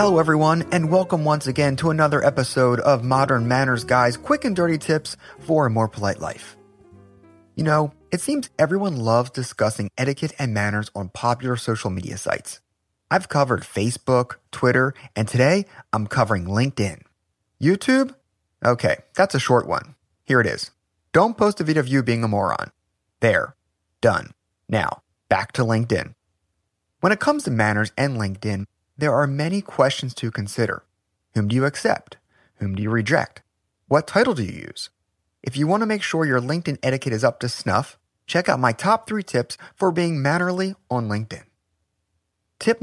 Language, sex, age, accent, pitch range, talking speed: English, male, 30-49, American, 110-160 Hz, 170 wpm